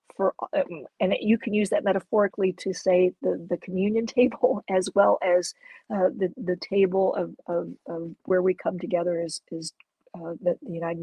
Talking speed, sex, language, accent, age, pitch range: 185 wpm, female, English, American, 50-69, 180-220 Hz